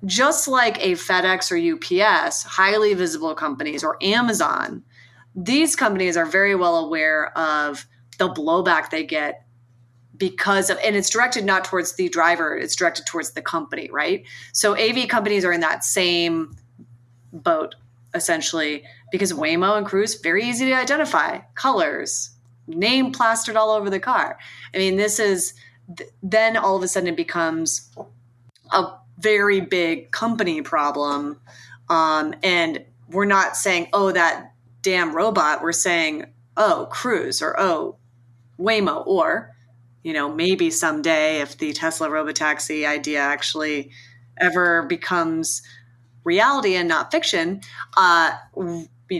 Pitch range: 140-195 Hz